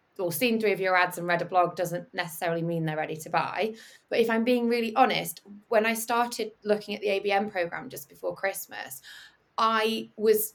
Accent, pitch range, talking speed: British, 170-215 Hz, 205 wpm